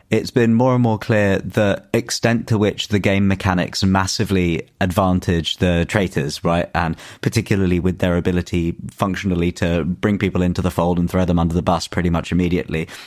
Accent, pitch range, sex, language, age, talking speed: British, 85-95 Hz, male, English, 30-49, 180 wpm